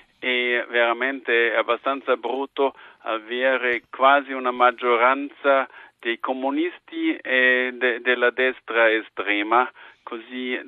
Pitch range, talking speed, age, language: 115-130 Hz, 90 wpm, 50-69, Italian